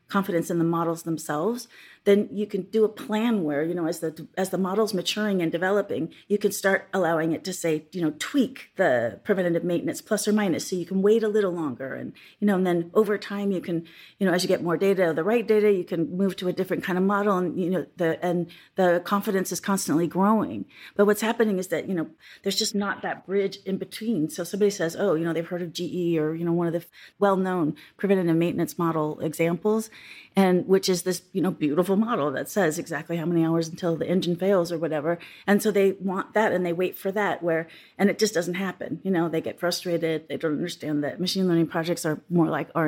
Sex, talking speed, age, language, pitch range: female, 240 wpm, 30-49, English, 165-205 Hz